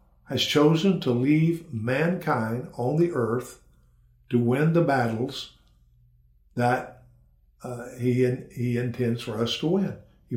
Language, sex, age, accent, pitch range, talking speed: English, male, 50-69, American, 120-150 Hz, 125 wpm